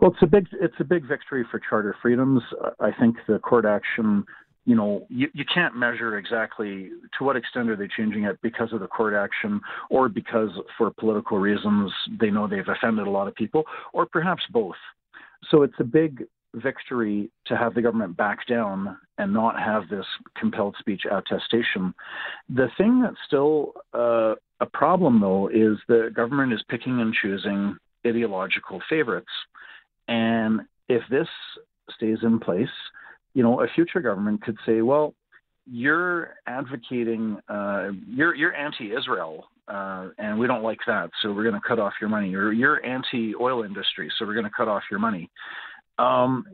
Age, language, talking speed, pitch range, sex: 50-69, English, 170 wpm, 105-135 Hz, male